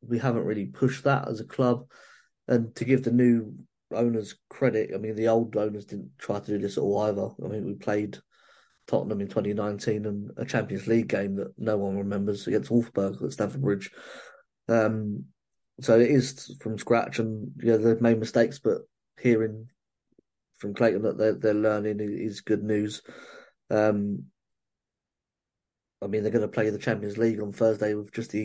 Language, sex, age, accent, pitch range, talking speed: English, male, 20-39, British, 105-120 Hz, 185 wpm